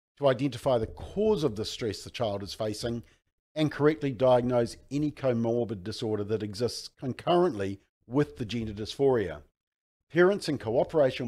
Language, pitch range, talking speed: English, 105-150 Hz, 145 wpm